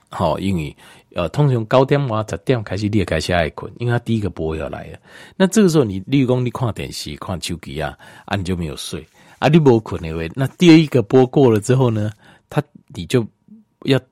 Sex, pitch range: male, 90-140 Hz